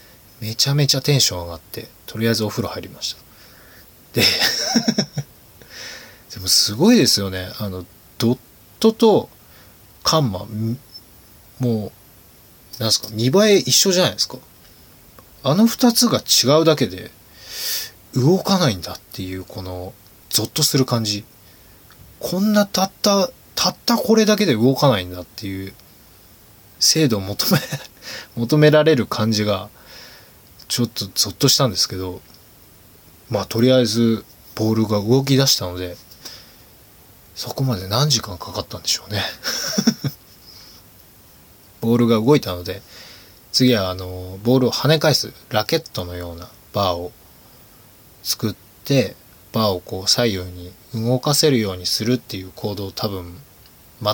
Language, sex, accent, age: Japanese, male, native, 20-39